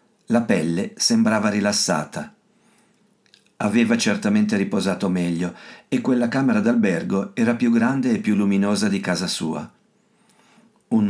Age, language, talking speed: 50-69, Italian, 120 wpm